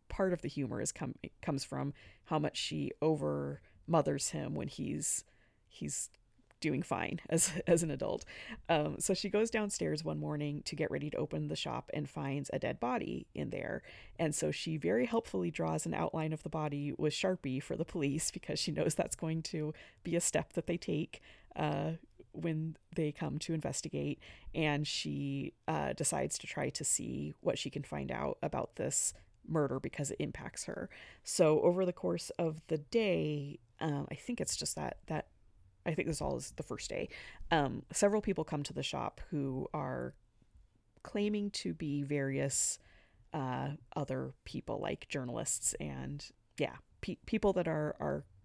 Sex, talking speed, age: female, 180 wpm, 30-49